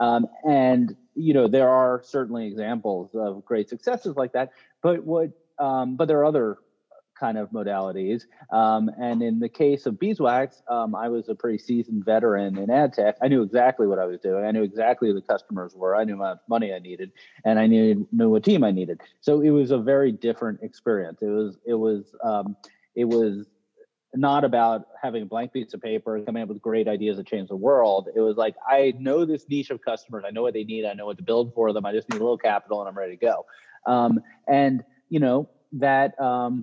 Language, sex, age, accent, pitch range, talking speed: English, male, 30-49, American, 105-130 Hz, 225 wpm